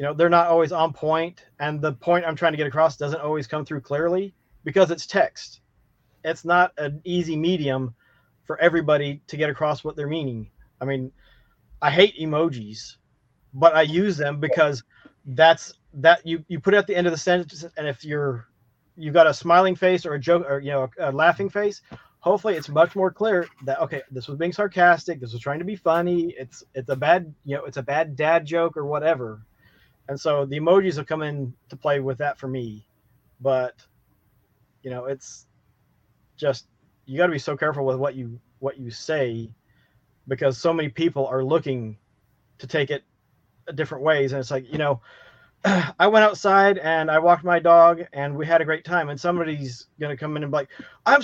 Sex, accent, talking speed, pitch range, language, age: male, American, 205 wpm, 135-175 Hz, English, 30-49